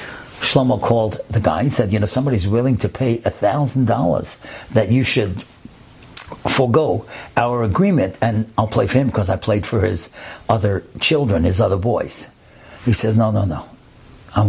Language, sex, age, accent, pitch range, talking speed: English, male, 60-79, American, 110-165 Hz, 175 wpm